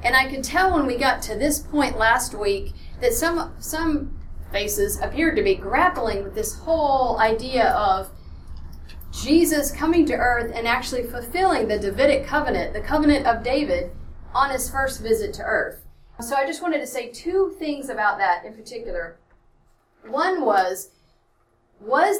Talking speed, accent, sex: 160 wpm, American, female